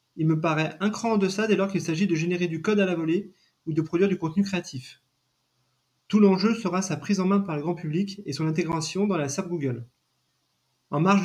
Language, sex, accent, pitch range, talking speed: French, male, French, 155-190 Hz, 235 wpm